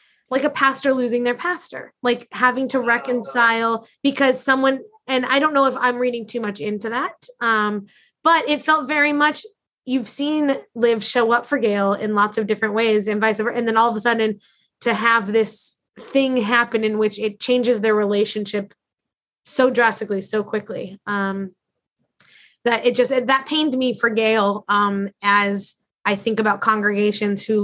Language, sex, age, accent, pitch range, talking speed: English, female, 20-39, American, 205-250 Hz, 175 wpm